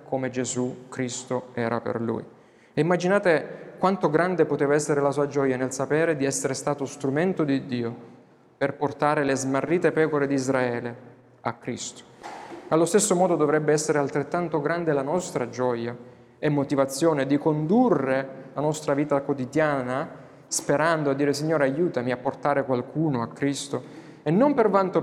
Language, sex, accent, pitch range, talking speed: Italian, male, native, 135-165 Hz, 155 wpm